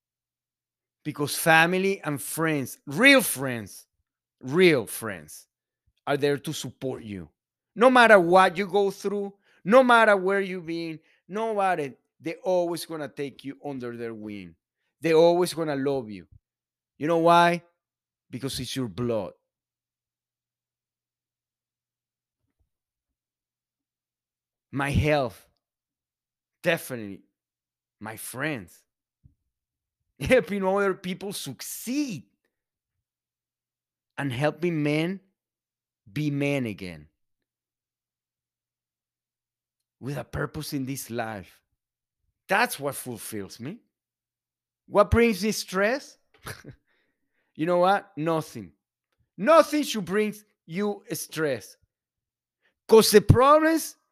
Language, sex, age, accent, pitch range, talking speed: English, male, 30-49, Mexican, 120-195 Hz, 100 wpm